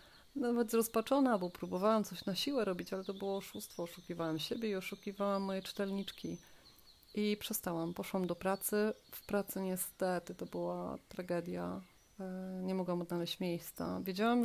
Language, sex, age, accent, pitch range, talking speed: Polish, female, 30-49, native, 180-205 Hz, 140 wpm